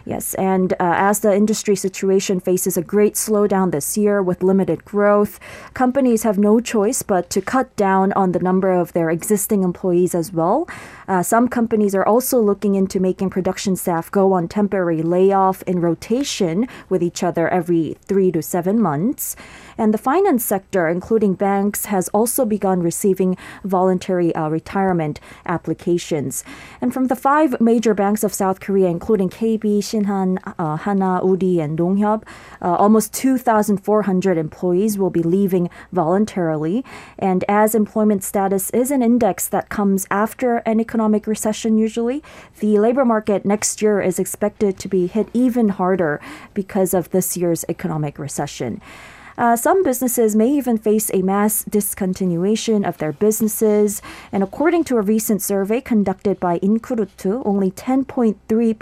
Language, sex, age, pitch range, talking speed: English, female, 20-39, 180-220 Hz, 155 wpm